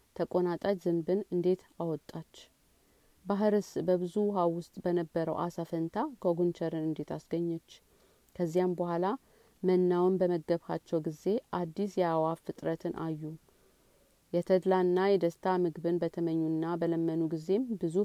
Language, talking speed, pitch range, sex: Amharic, 100 wpm, 165-190 Hz, female